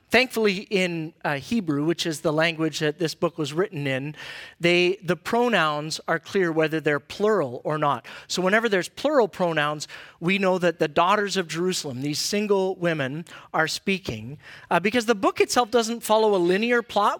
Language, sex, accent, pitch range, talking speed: English, male, American, 155-205 Hz, 180 wpm